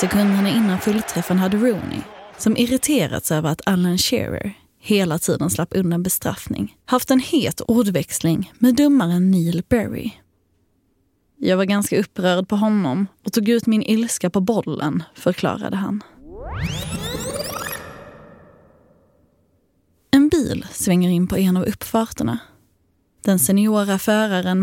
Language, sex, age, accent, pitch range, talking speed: Swedish, female, 20-39, native, 175-235 Hz, 120 wpm